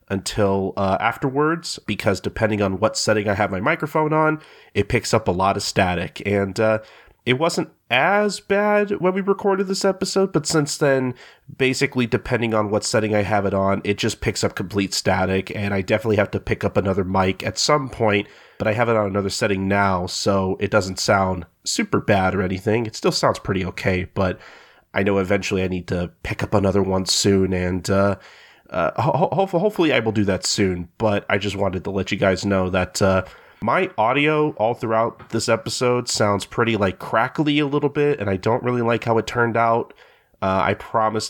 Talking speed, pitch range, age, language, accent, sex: 200 wpm, 100-120 Hz, 30-49, English, American, male